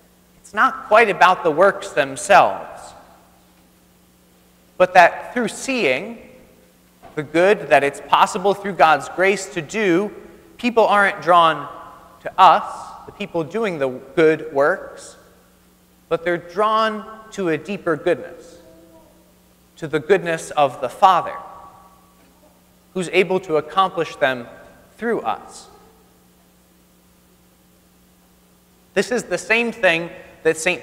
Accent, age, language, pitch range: American, 30-49, English, 130-195 Hz